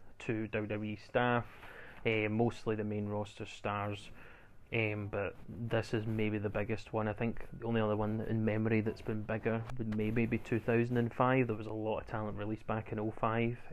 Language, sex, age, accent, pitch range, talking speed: English, male, 20-39, British, 105-115 Hz, 185 wpm